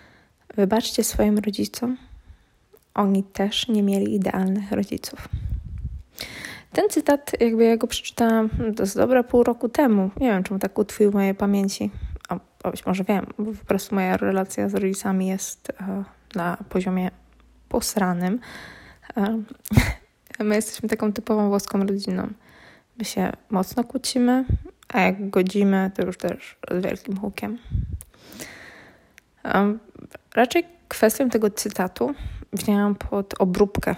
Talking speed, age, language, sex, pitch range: 125 wpm, 20-39, Polish, female, 190-220 Hz